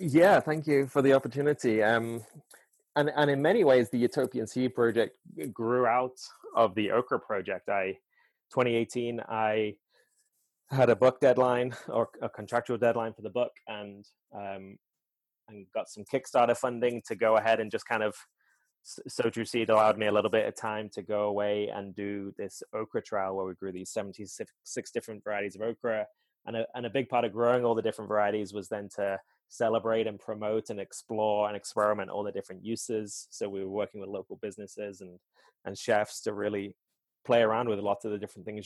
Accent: British